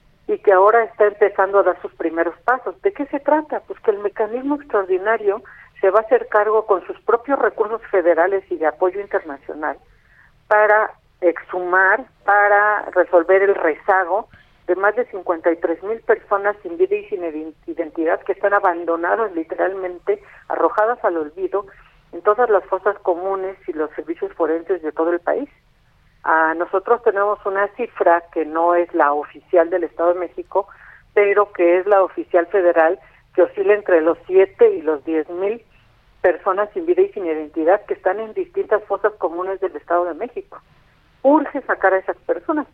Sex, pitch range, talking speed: female, 175-210 Hz, 165 wpm